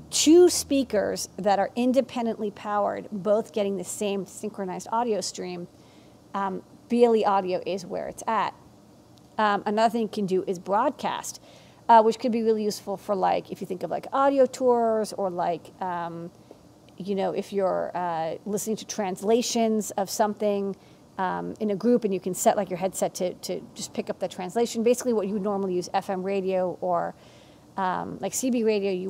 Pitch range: 195-225 Hz